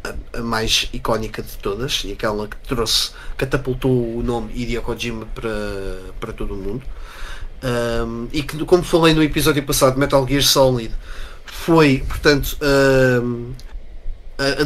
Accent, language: Portuguese, Portuguese